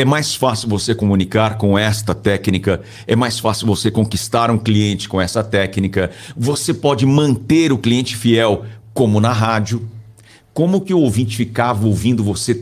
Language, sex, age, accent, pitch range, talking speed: Portuguese, male, 60-79, Brazilian, 110-145 Hz, 160 wpm